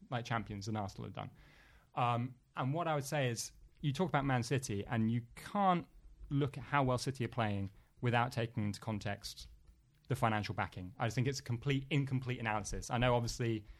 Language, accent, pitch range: English, British, 110-135 Hz